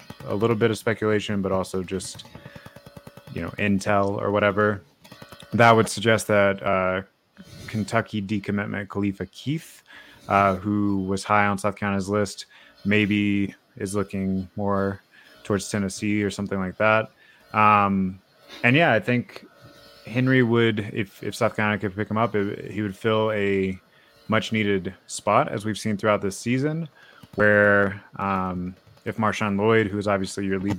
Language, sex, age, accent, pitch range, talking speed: English, male, 20-39, American, 100-110 Hz, 155 wpm